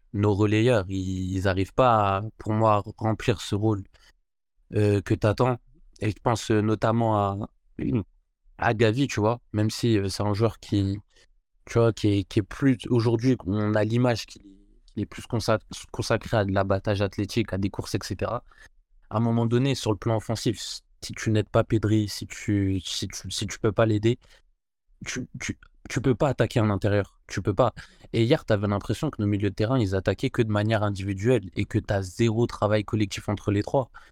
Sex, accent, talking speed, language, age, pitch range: male, French, 200 wpm, French, 20-39, 105-115 Hz